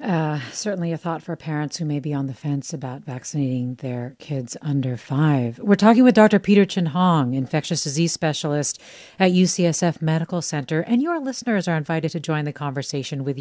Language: English